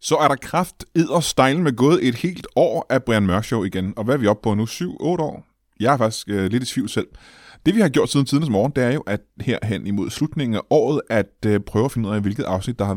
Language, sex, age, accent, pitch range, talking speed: Danish, male, 20-39, native, 100-135 Hz, 280 wpm